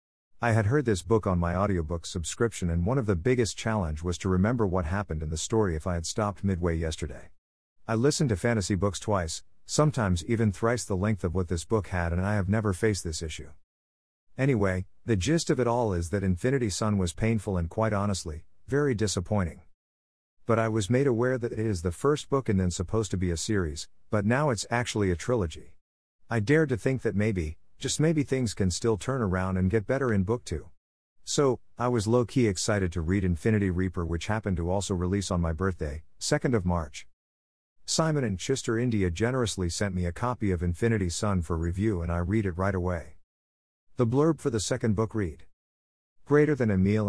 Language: English